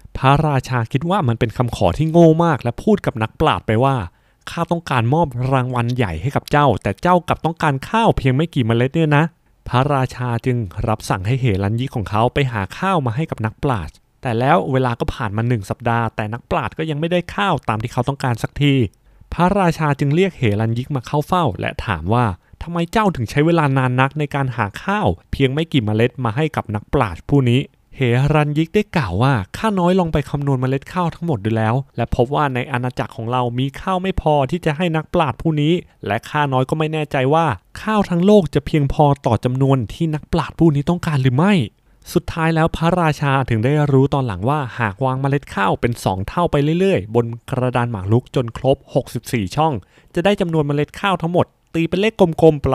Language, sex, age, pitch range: Thai, male, 20-39, 120-160 Hz